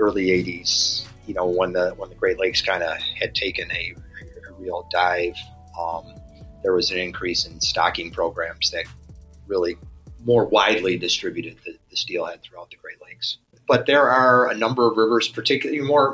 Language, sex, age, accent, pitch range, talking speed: English, male, 30-49, American, 90-120 Hz, 175 wpm